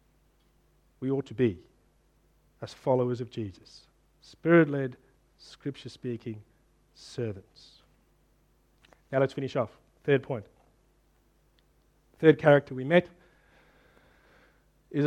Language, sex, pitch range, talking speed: English, male, 130-170 Hz, 90 wpm